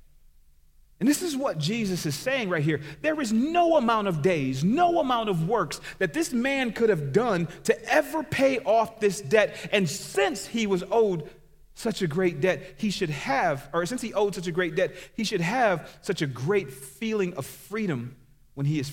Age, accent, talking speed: 40-59, American, 200 wpm